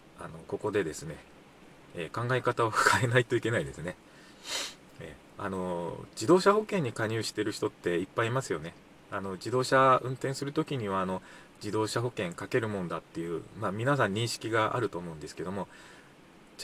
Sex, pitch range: male, 105-155 Hz